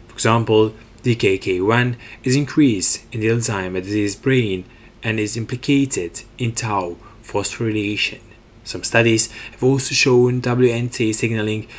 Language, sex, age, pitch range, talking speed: English, male, 20-39, 105-120 Hz, 110 wpm